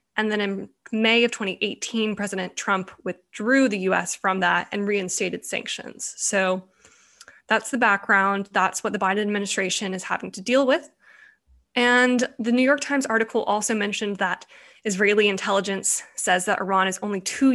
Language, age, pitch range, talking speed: English, 10-29, 190-225 Hz, 160 wpm